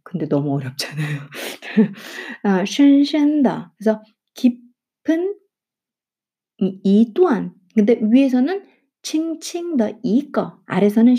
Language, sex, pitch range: Korean, female, 175-265 Hz